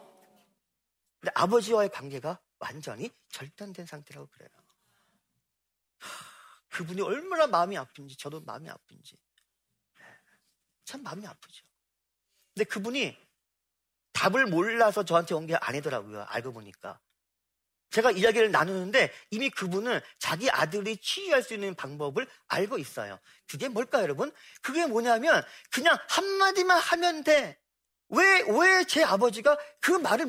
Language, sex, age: Korean, male, 40-59